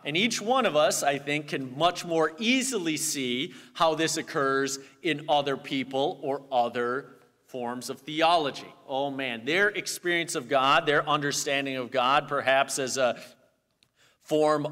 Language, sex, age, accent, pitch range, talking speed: English, male, 40-59, American, 120-150 Hz, 150 wpm